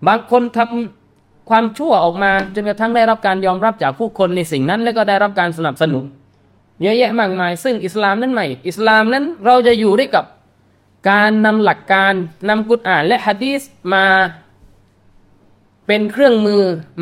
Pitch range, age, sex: 155-220 Hz, 20-39, male